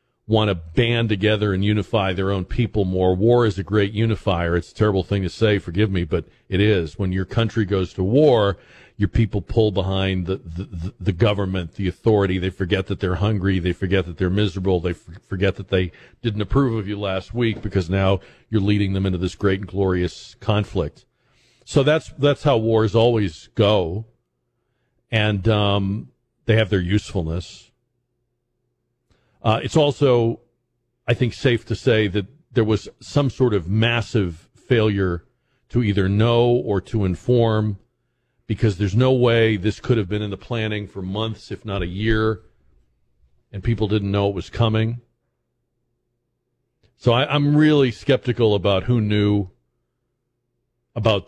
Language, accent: English, American